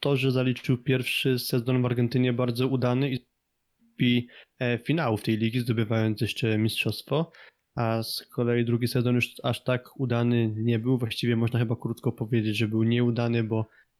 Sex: male